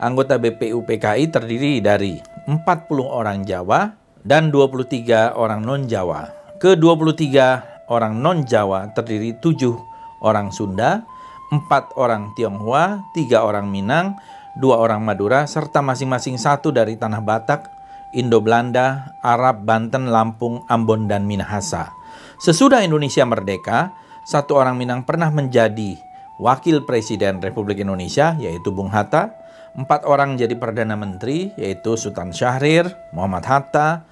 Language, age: Indonesian, 40-59